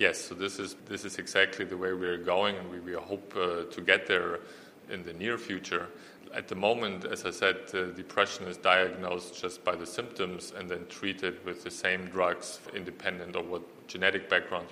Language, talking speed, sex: English, 205 wpm, male